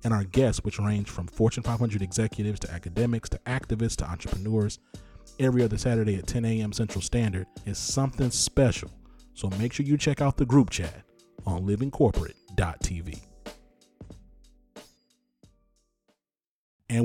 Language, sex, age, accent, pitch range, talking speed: English, male, 30-49, American, 95-125 Hz, 135 wpm